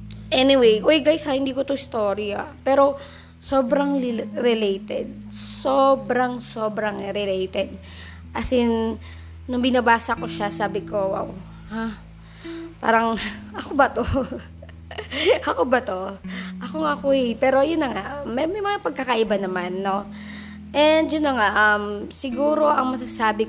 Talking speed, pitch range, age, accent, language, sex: 140 wpm, 190-235 Hz, 20-39, native, Filipino, female